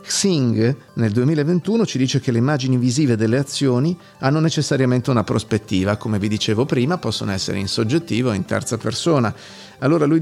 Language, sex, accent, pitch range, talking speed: Italian, male, native, 110-150 Hz, 170 wpm